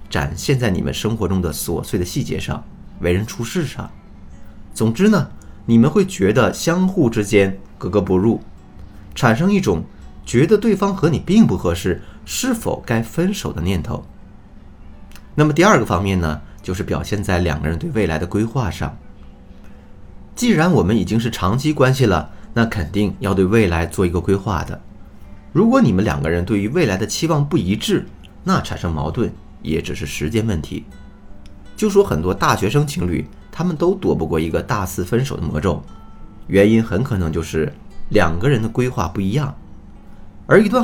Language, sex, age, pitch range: Chinese, male, 30-49, 90-130 Hz